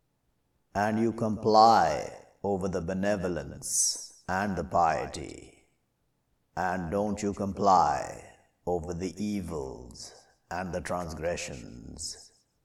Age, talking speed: 60-79, 90 wpm